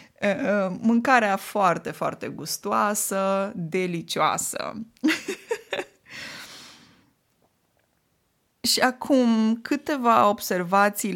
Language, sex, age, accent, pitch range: Romanian, female, 20-39, native, 170-225 Hz